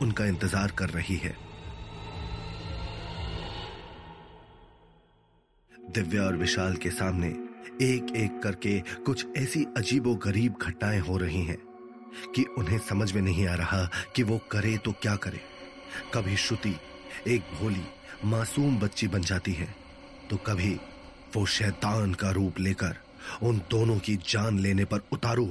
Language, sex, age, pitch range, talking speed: Hindi, male, 30-49, 95-120 Hz, 130 wpm